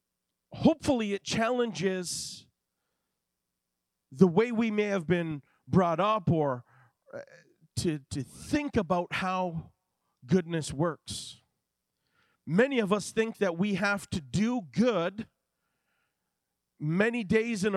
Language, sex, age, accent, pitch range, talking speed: English, male, 40-59, American, 150-220 Hz, 110 wpm